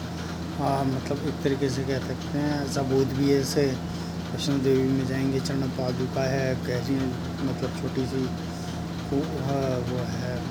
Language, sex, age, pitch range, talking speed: Hindi, male, 20-39, 85-140 Hz, 145 wpm